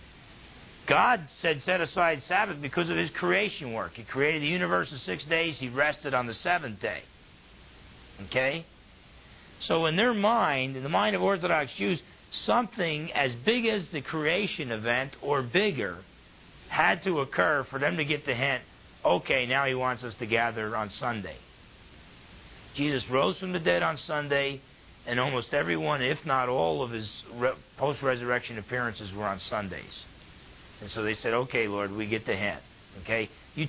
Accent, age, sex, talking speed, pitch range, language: American, 50-69, male, 165 wpm, 110-160 Hz, English